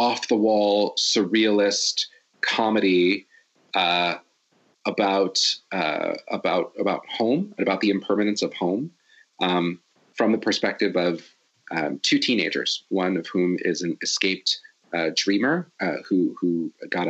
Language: English